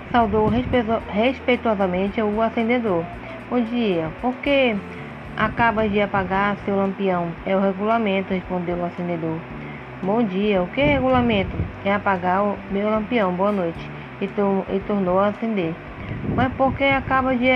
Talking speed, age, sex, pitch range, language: 150 wpm, 20-39, female, 195-230 Hz, Portuguese